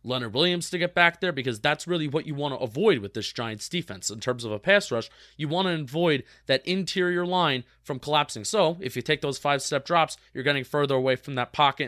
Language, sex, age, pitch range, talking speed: English, male, 30-49, 125-165 Hz, 235 wpm